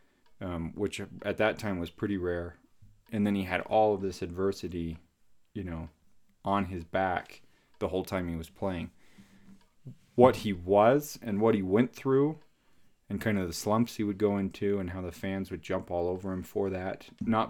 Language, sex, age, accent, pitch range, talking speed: English, male, 30-49, American, 90-105 Hz, 190 wpm